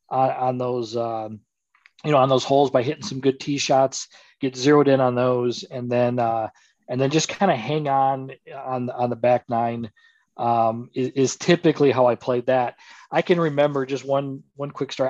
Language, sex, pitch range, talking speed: English, male, 125-150 Hz, 200 wpm